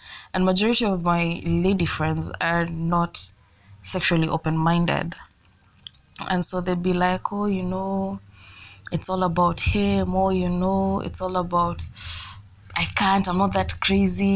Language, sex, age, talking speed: English, female, 20-39, 140 wpm